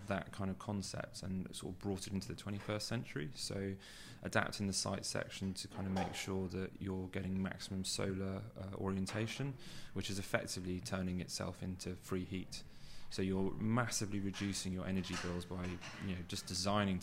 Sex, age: male, 20-39